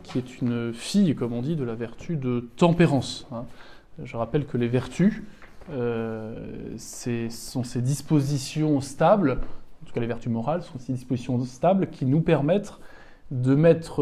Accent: French